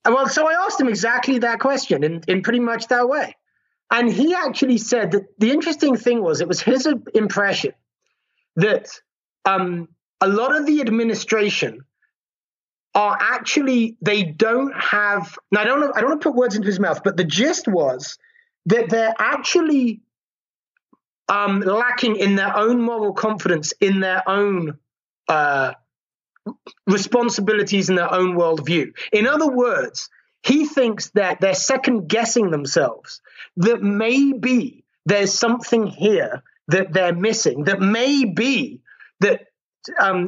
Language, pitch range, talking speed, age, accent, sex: English, 190-250 Hz, 145 wpm, 30-49, British, male